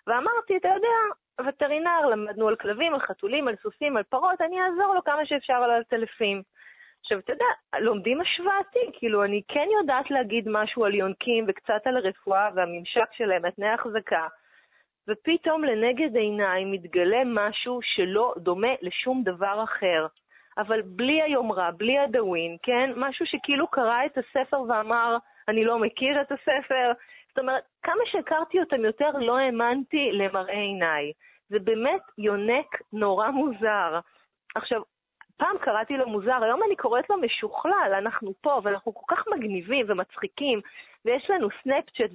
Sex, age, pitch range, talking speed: female, 30-49, 205-280 Hz, 145 wpm